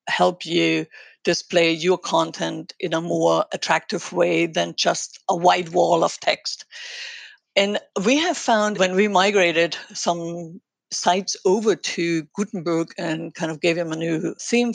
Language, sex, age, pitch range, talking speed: English, female, 60-79, 170-205 Hz, 150 wpm